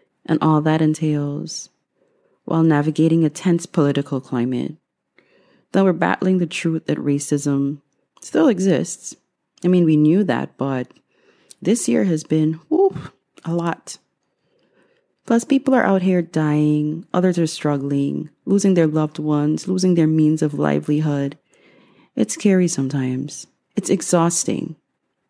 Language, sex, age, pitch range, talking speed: English, female, 30-49, 145-185 Hz, 130 wpm